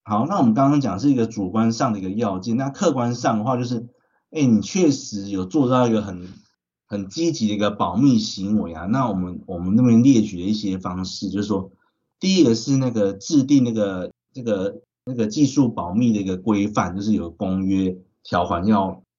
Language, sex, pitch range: Chinese, male, 95-120 Hz